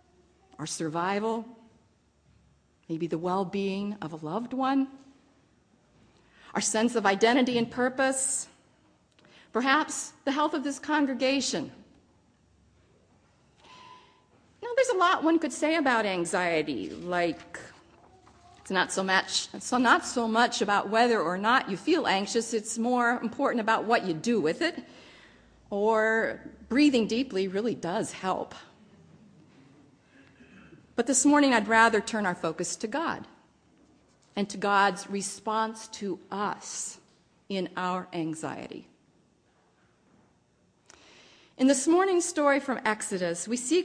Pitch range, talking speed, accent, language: 190-260 Hz, 120 wpm, American, English